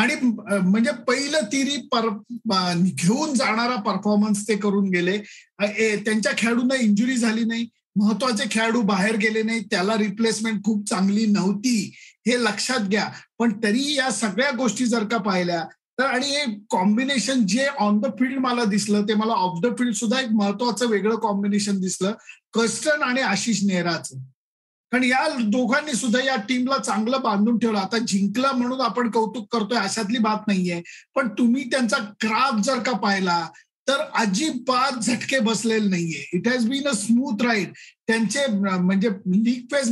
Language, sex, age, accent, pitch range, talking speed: Marathi, male, 50-69, native, 205-250 Hz, 150 wpm